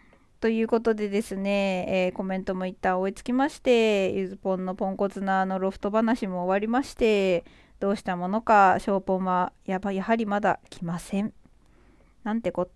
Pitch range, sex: 190-265 Hz, female